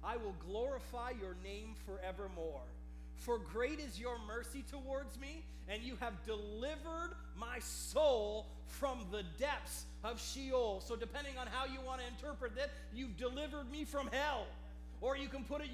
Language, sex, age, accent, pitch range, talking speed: English, male, 40-59, American, 220-295 Hz, 165 wpm